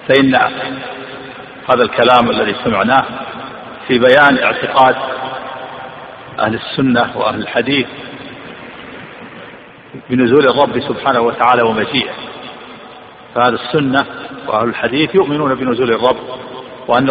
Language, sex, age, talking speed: Arabic, male, 50-69, 90 wpm